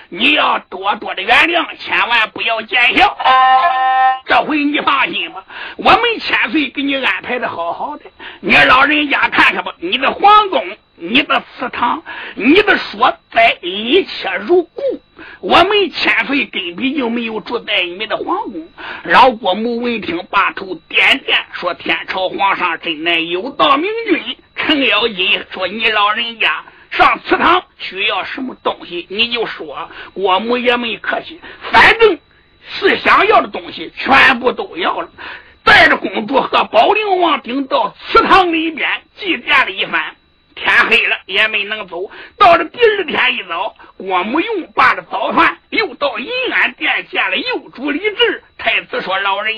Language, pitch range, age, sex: Chinese, 225-360 Hz, 50-69, male